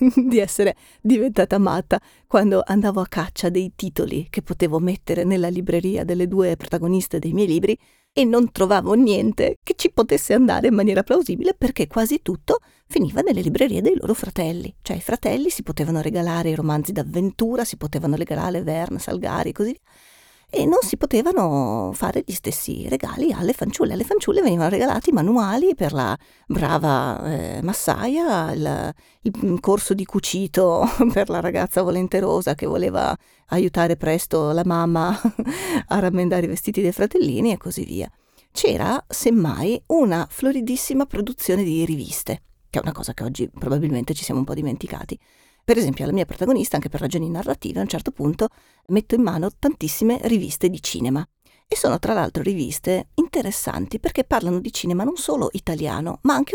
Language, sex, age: Italian, female, 40-59